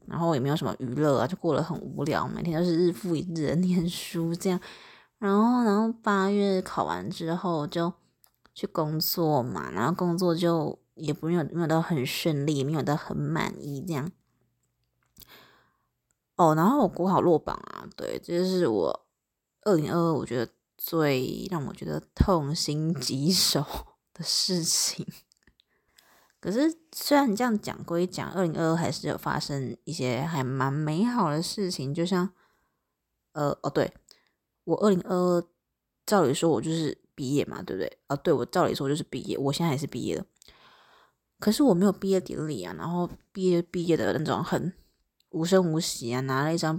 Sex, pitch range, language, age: female, 150-180 Hz, Chinese, 20-39